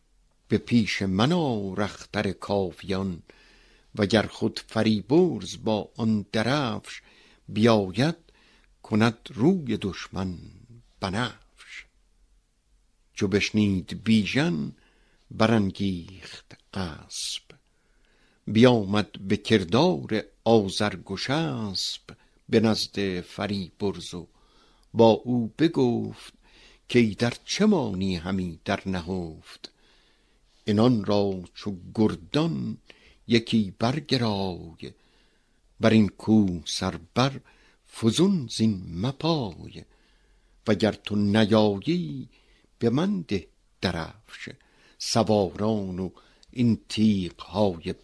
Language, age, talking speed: Persian, 60-79, 80 wpm